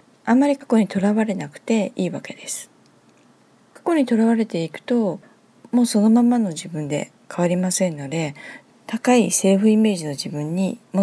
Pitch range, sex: 175-265 Hz, female